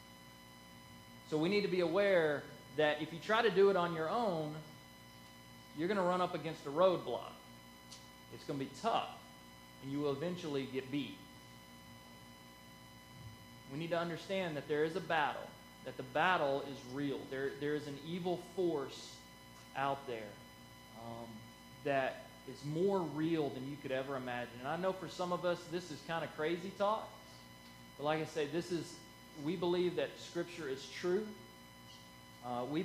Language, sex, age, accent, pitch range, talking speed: English, male, 20-39, American, 120-165 Hz, 170 wpm